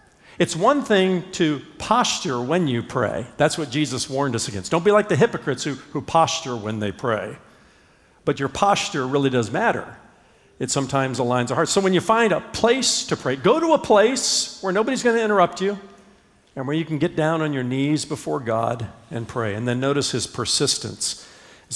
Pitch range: 115-175 Hz